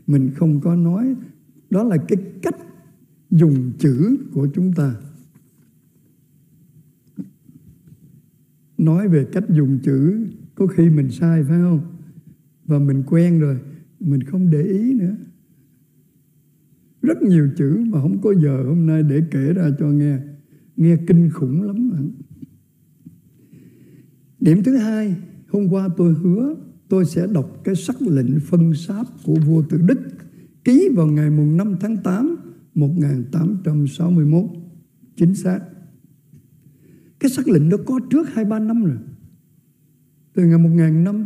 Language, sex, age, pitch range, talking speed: Vietnamese, male, 60-79, 150-200 Hz, 140 wpm